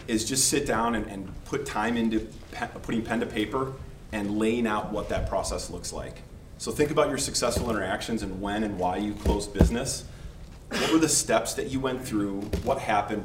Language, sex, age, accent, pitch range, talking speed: English, male, 30-49, American, 95-115 Hz, 200 wpm